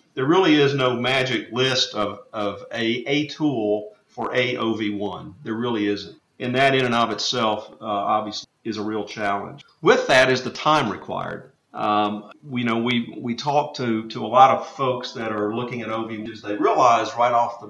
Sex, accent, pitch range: male, American, 105-130 Hz